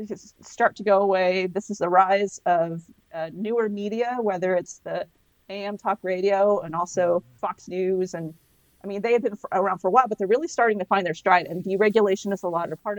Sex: female